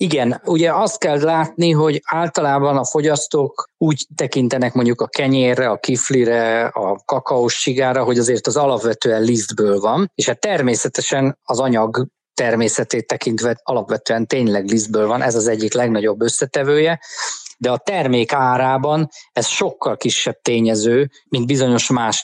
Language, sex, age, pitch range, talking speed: Hungarian, male, 20-39, 115-145 Hz, 140 wpm